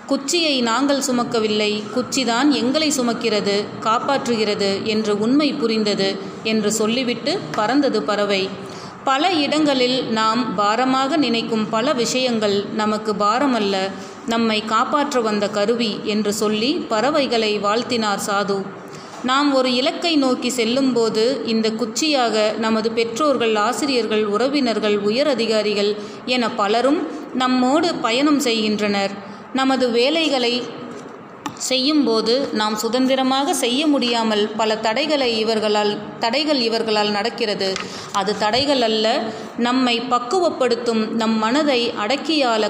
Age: 30-49